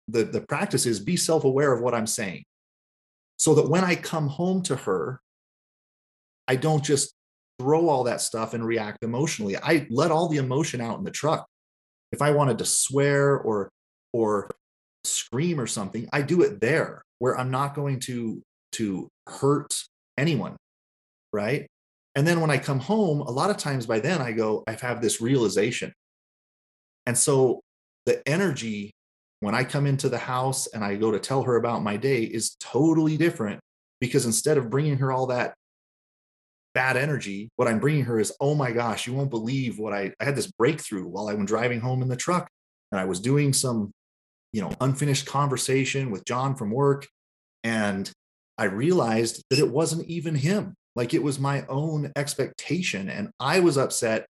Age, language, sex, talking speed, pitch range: 30-49, English, male, 180 wpm, 115-145 Hz